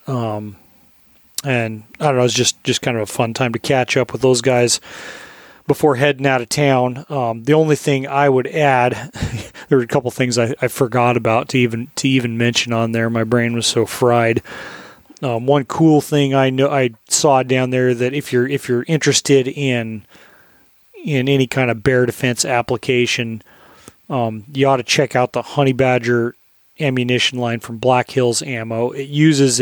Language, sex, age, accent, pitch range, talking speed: English, male, 30-49, American, 120-140 Hz, 190 wpm